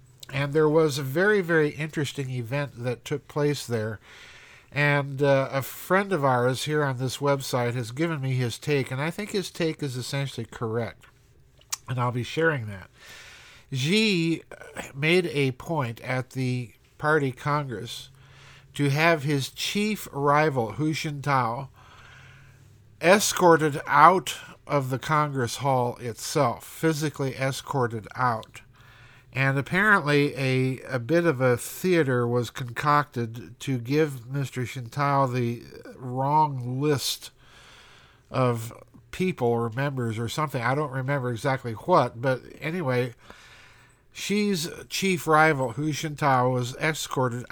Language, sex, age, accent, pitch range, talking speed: English, male, 50-69, American, 125-150 Hz, 130 wpm